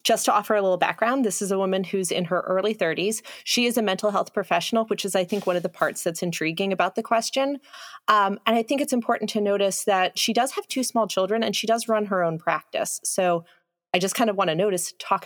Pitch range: 180-215 Hz